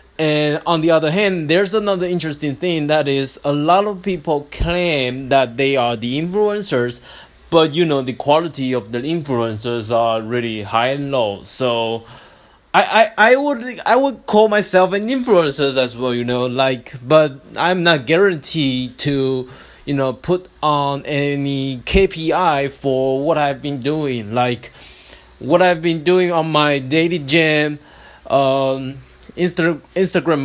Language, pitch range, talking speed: English, 130-175 Hz, 155 wpm